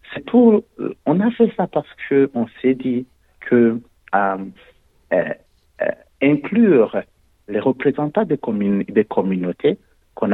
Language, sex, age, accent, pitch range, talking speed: French, male, 50-69, French, 100-145 Hz, 130 wpm